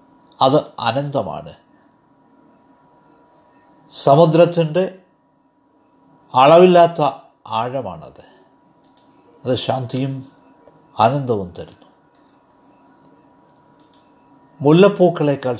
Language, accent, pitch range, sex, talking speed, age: Malayalam, native, 125-150 Hz, male, 40 wpm, 60-79